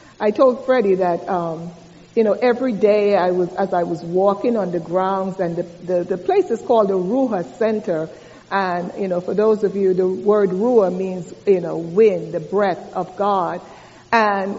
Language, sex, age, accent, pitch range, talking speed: English, female, 60-79, American, 190-240 Hz, 195 wpm